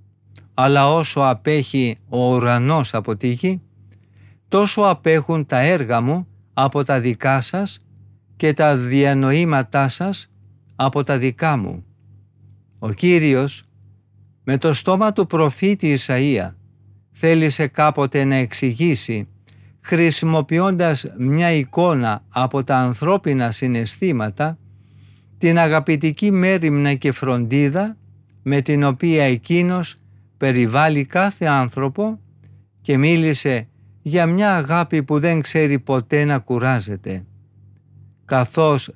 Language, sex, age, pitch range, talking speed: Greek, male, 50-69, 110-160 Hz, 100 wpm